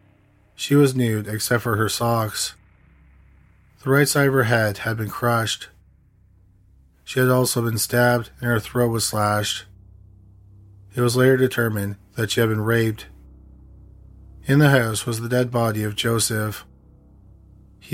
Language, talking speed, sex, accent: English, 150 wpm, male, American